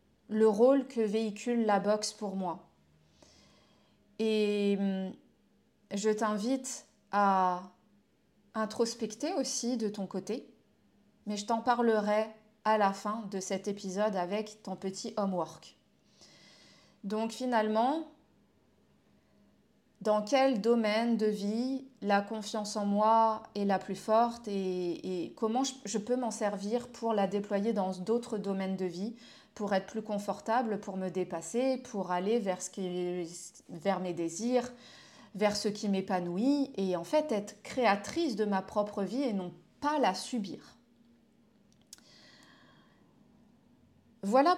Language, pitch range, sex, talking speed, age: French, 200-235 Hz, female, 125 wpm, 30-49